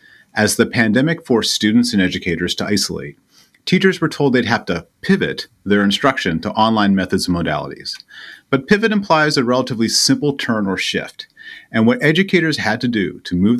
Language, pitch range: English, 95-145 Hz